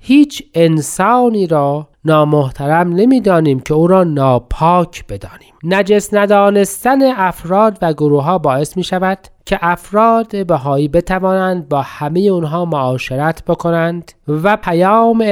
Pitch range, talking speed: 150-200 Hz, 120 wpm